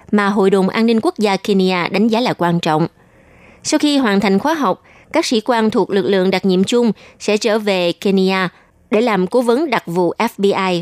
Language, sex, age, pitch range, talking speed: Vietnamese, female, 20-39, 185-235 Hz, 215 wpm